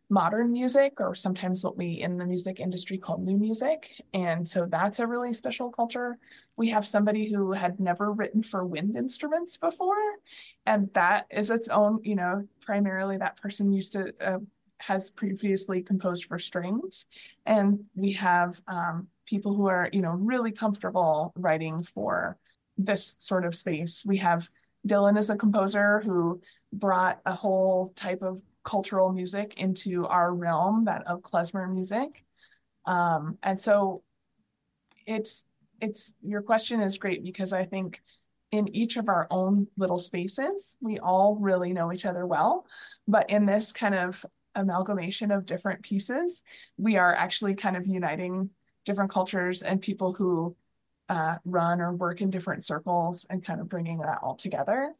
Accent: American